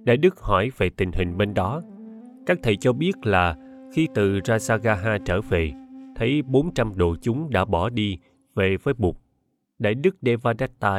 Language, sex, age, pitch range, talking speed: Vietnamese, male, 20-39, 100-160 Hz, 170 wpm